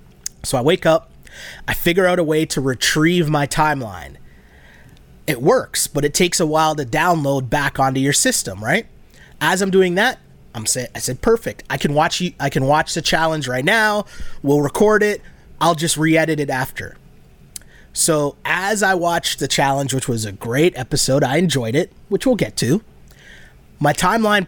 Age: 30-49